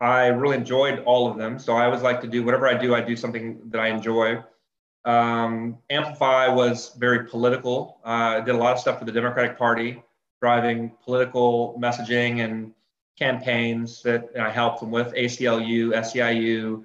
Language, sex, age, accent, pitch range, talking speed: English, male, 20-39, American, 115-125 Hz, 180 wpm